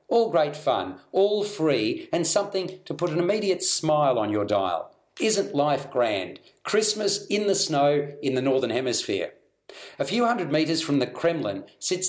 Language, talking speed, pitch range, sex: English, 170 wpm, 135-185 Hz, male